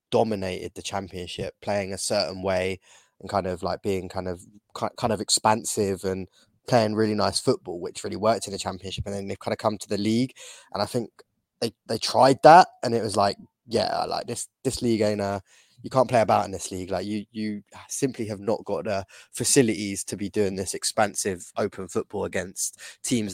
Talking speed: 205 wpm